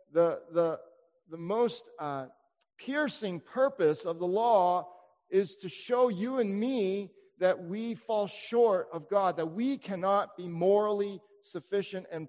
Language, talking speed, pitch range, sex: English, 140 wpm, 155-215 Hz, male